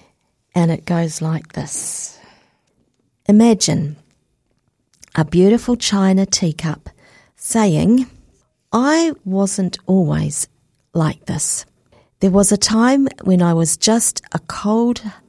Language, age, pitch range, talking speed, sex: English, 50-69, 170-225 Hz, 100 wpm, female